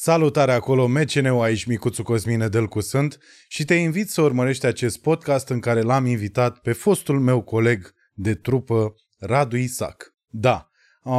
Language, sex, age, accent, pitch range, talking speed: Romanian, male, 20-39, native, 110-135 Hz, 155 wpm